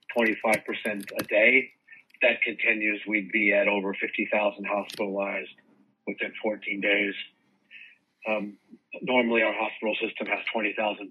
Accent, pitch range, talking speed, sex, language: American, 105-120 Hz, 110 wpm, male, English